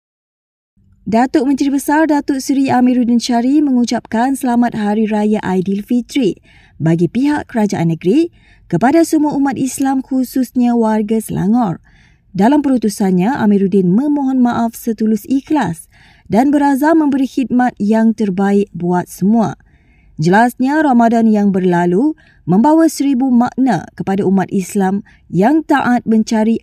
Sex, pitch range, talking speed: female, 200-265 Hz, 115 wpm